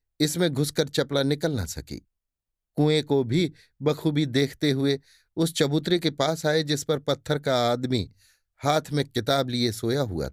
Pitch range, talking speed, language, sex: 120-155 Hz, 165 wpm, Hindi, male